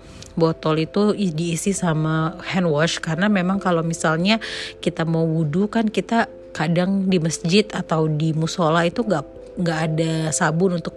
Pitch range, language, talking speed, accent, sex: 165-195 Hz, Indonesian, 150 wpm, native, female